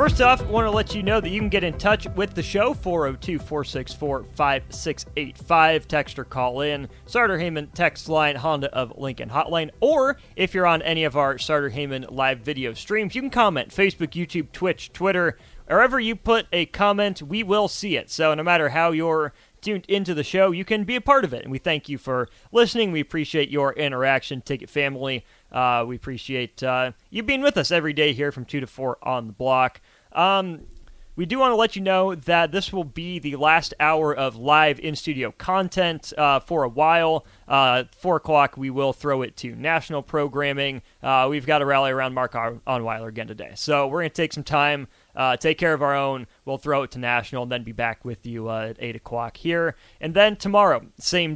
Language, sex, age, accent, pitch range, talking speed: English, male, 30-49, American, 130-175 Hz, 210 wpm